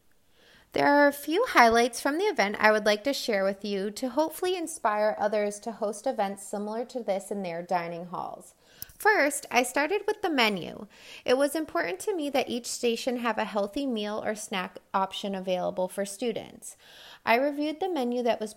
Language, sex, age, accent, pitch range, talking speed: English, female, 20-39, American, 205-260 Hz, 190 wpm